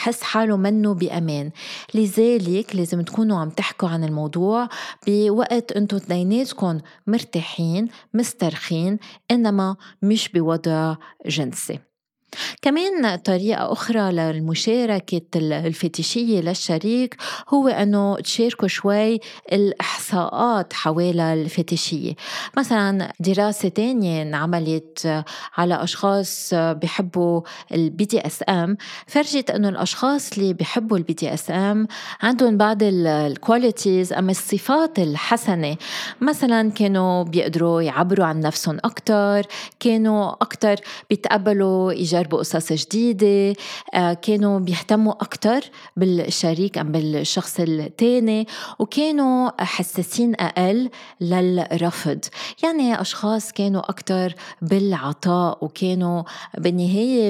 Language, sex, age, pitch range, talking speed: Arabic, female, 20-39, 170-215 Hz, 90 wpm